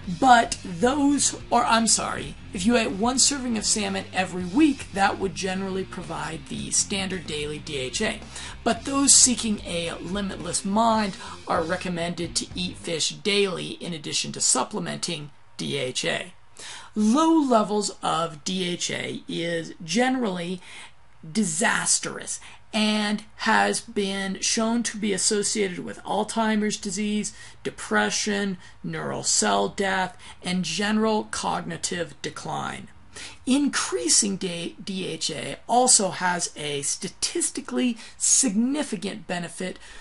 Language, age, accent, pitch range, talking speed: English, 40-59, American, 175-230 Hz, 110 wpm